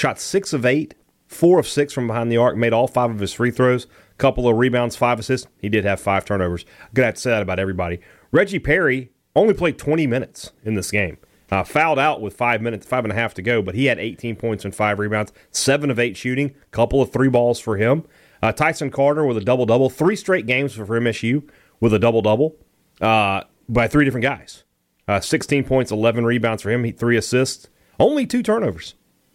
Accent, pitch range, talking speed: American, 105-140 Hz, 220 wpm